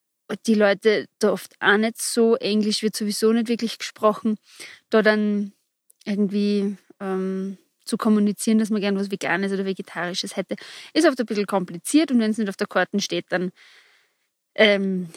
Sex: female